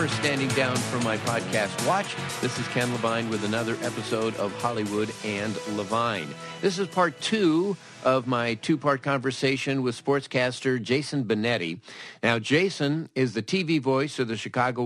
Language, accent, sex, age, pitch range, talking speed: English, American, male, 50-69, 110-145 Hz, 155 wpm